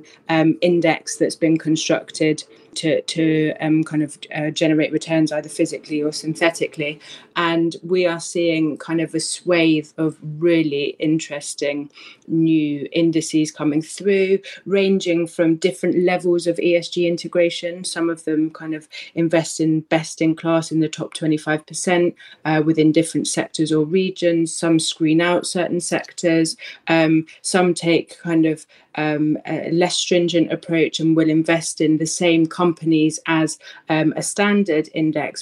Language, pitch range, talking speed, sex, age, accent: English, 155-170 Hz, 145 wpm, female, 30-49, British